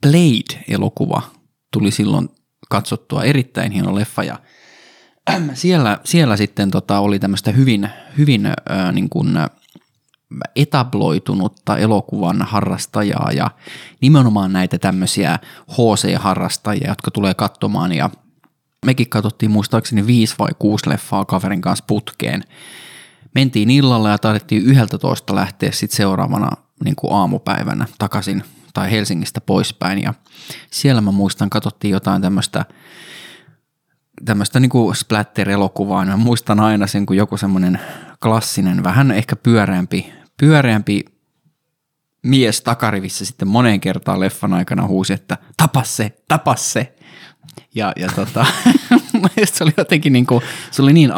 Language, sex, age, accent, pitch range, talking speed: Finnish, male, 20-39, native, 100-140 Hz, 110 wpm